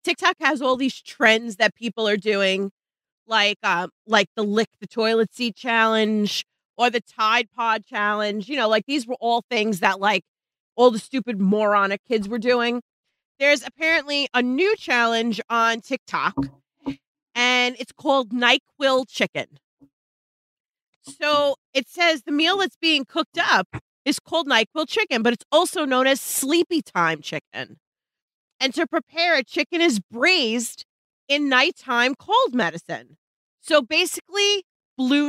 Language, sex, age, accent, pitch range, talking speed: English, female, 30-49, American, 220-295 Hz, 145 wpm